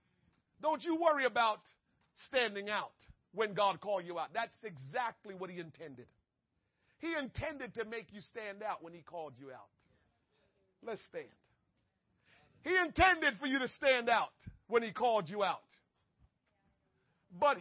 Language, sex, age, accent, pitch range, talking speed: English, male, 40-59, American, 180-280 Hz, 145 wpm